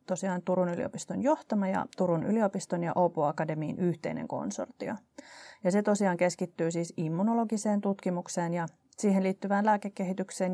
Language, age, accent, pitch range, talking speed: Finnish, 30-49, native, 180-200 Hz, 125 wpm